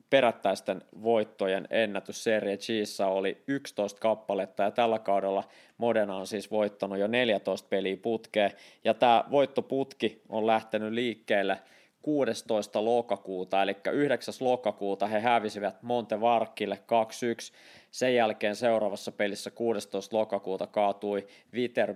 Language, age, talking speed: Finnish, 20-39, 115 wpm